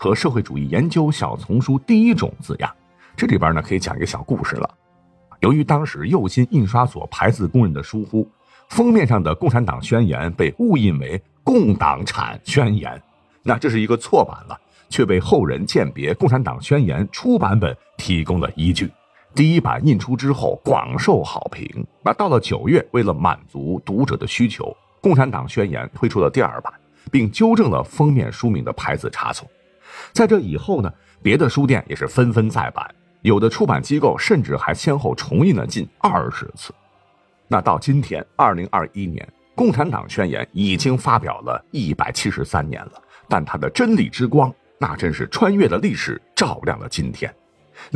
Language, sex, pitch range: Chinese, male, 100-150 Hz